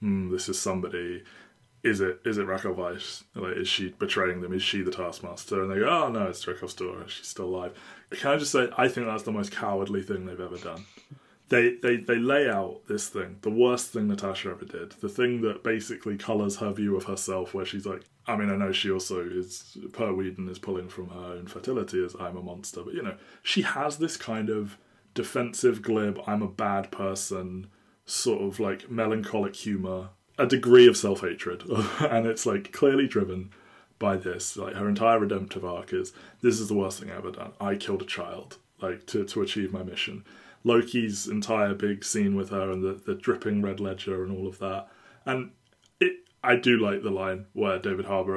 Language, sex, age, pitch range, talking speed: English, male, 20-39, 95-120 Hz, 205 wpm